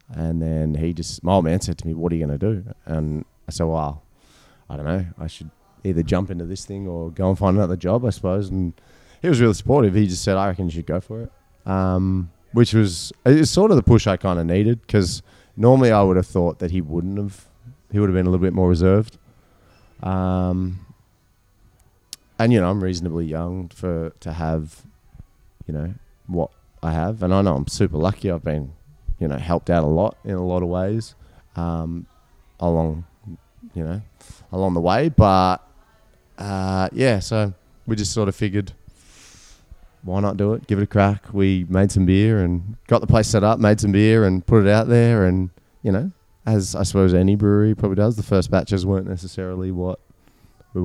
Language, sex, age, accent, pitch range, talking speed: English, male, 30-49, Australian, 85-105 Hz, 210 wpm